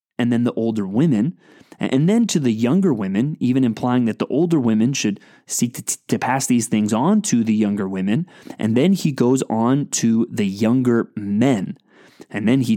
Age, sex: 20-39, male